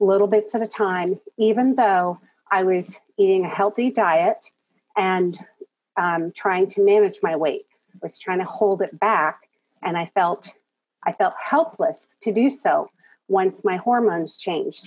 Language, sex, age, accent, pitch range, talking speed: English, female, 40-59, American, 185-225 Hz, 160 wpm